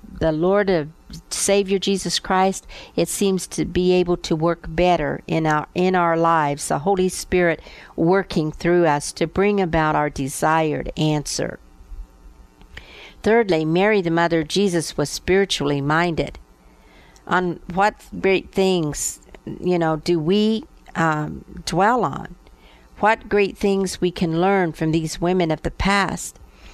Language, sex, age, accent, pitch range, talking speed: English, female, 50-69, American, 155-190 Hz, 140 wpm